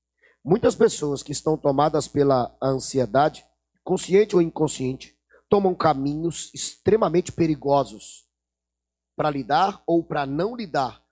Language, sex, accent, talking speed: Portuguese, male, Brazilian, 110 wpm